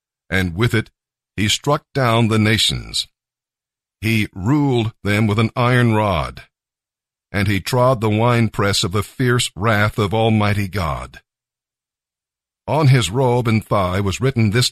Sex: male